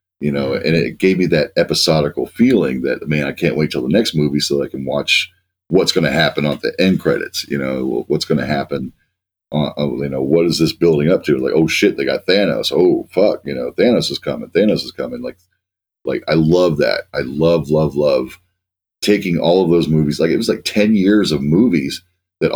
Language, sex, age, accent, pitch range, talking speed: English, male, 40-59, American, 75-90 Hz, 220 wpm